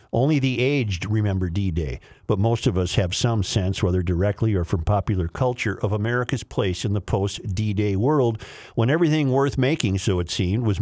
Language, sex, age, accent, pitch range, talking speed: English, male, 50-69, American, 110-135 Hz, 185 wpm